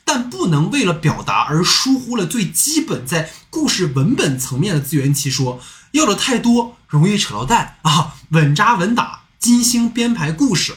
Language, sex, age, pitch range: Chinese, male, 20-39, 150-230 Hz